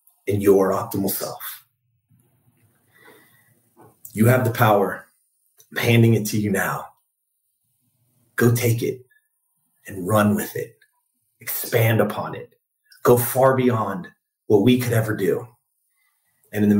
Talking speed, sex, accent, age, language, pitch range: 120 wpm, male, American, 30-49, English, 110-135 Hz